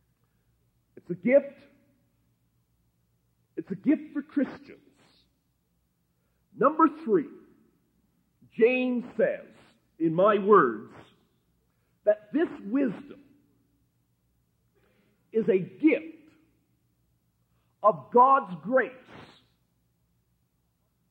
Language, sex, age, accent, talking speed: English, male, 50-69, American, 70 wpm